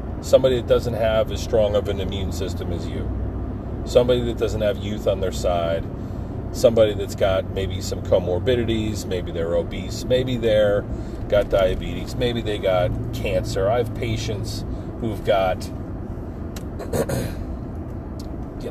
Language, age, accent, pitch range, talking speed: English, 40-59, American, 90-115 Hz, 135 wpm